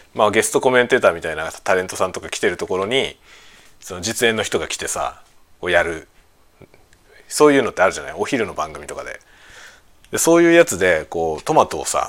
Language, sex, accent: Japanese, male, native